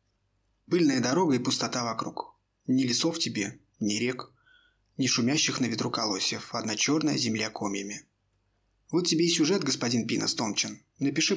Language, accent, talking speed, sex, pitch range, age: Russian, native, 145 wpm, male, 105-140 Hz, 20-39